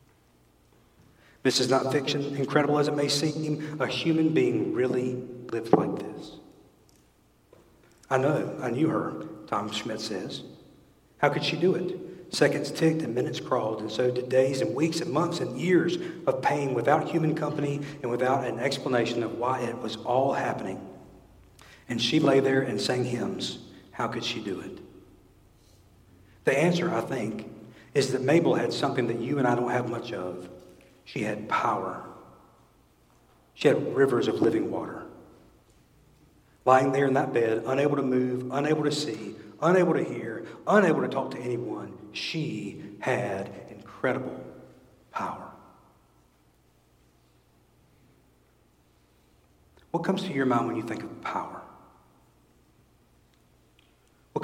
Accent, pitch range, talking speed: American, 105-145 Hz, 145 wpm